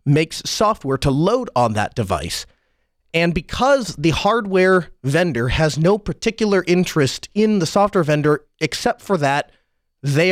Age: 30-49